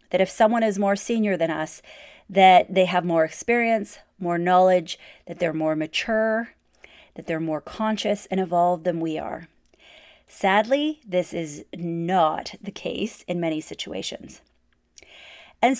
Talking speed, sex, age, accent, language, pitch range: 145 wpm, female, 30-49, American, English, 180-240 Hz